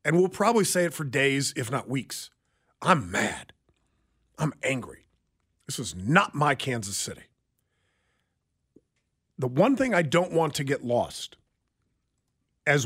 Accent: American